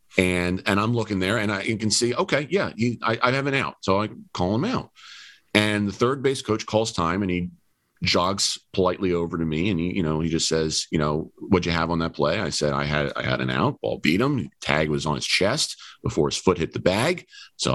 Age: 40-59